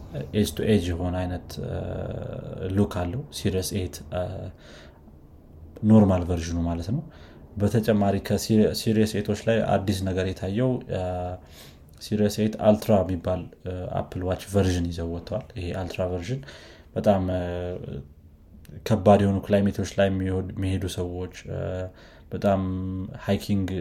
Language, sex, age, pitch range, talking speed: Amharic, male, 20-39, 90-105 Hz, 80 wpm